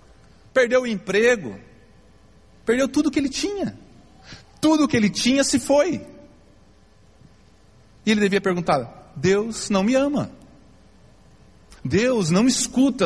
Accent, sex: Brazilian, male